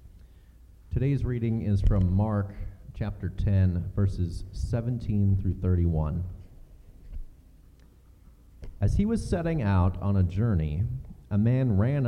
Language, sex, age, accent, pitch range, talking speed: English, male, 30-49, American, 90-115 Hz, 110 wpm